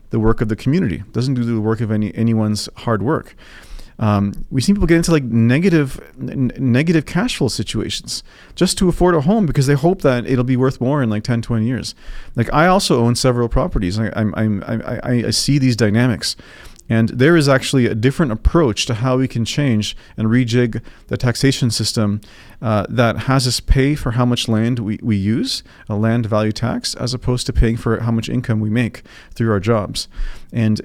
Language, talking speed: English, 205 wpm